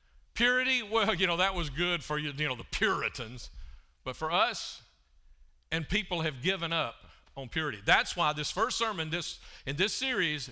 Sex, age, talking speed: male, 50-69, 175 wpm